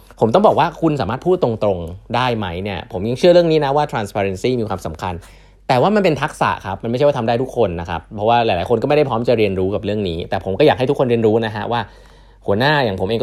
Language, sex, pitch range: Thai, male, 100-130 Hz